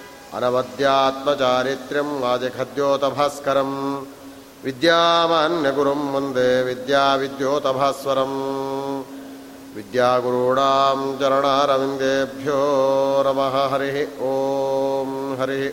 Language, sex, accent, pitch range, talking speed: Kannada, male, native, 130-140 Hz, 40 wpm